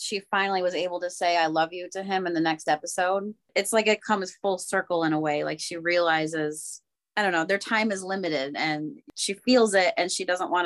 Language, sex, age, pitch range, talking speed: English, female, 20-39, 165-200 Hz, 235 wpm